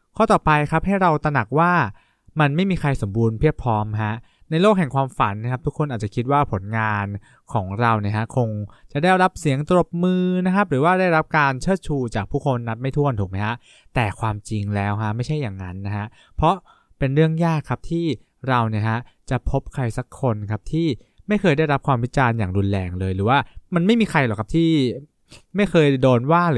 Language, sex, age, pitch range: English, male, 20-39, 105-150 Hz